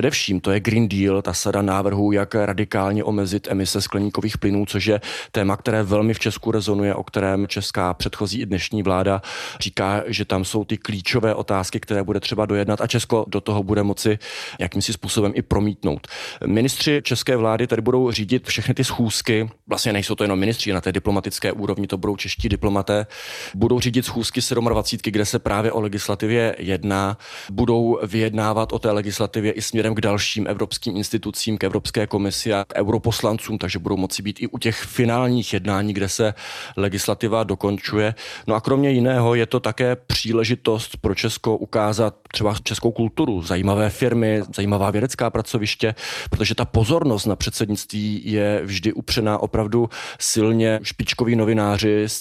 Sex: male